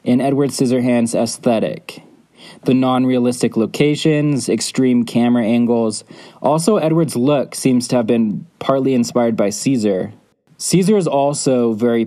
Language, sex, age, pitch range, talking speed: English, male, 20-39, 115-135 Hz, 125 wpm